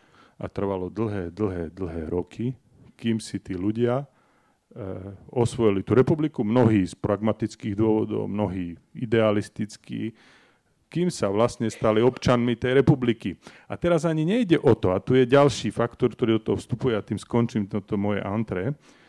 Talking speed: 150 wpm